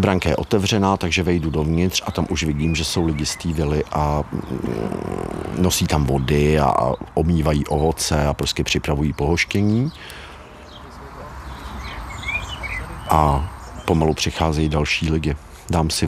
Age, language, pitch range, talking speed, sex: 50-69, Czech, 75-90 Hz, 120 wpm, male